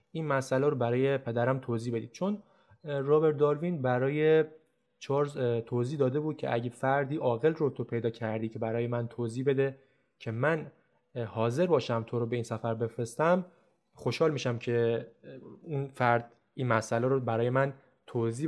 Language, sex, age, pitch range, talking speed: English, male, 20-39, 115-150 Hz, 160 wpm